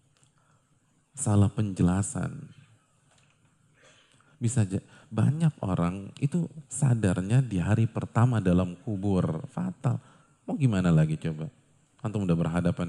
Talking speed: 100 wpm